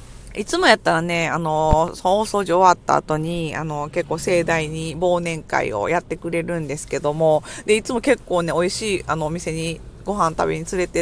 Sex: female